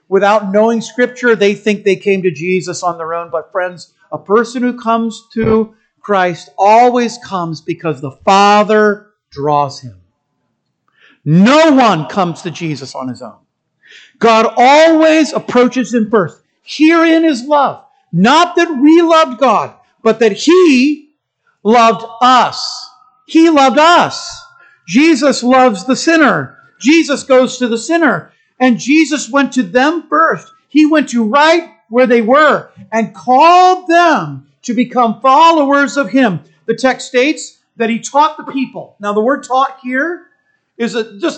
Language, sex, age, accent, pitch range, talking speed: English, male, 50-69, American, 185-280 Hz, 145 wpm